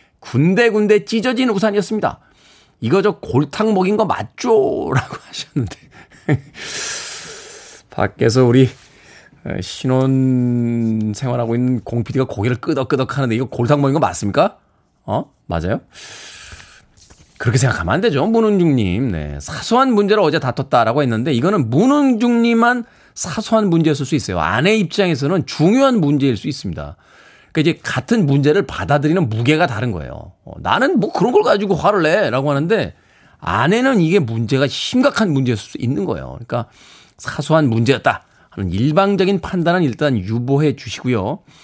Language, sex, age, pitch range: Korean, male, 40-59, 125-205 Hz